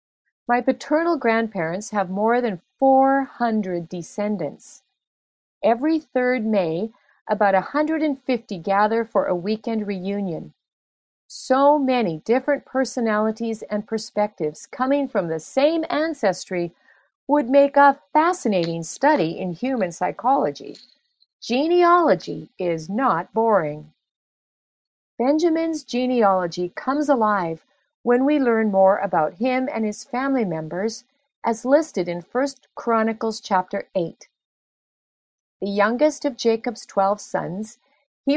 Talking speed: 110 wpm